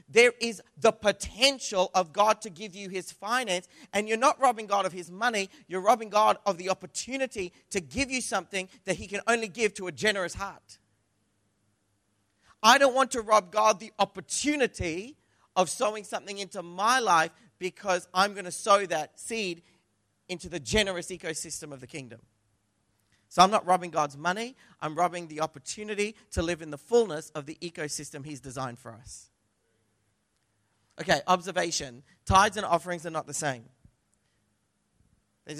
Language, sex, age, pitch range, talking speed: English, male, 40-59, 140-200 Hz, 165 wpm